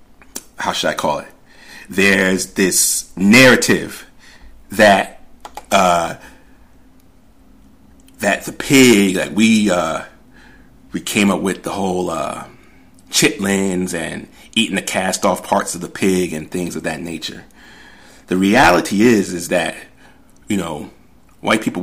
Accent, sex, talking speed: American, male, 130 wpm